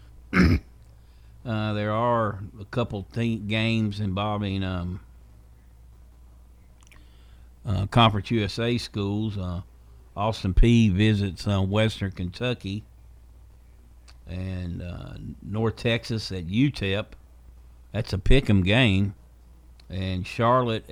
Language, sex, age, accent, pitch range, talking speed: English, male, 50-69, American, 70-110 Hz, 90 wpm